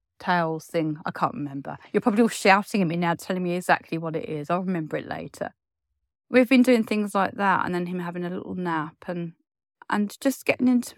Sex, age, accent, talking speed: female, 30-49, British, 220 wpm